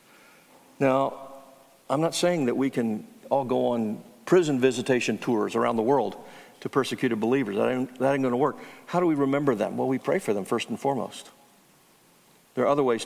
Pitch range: 115-145 Hz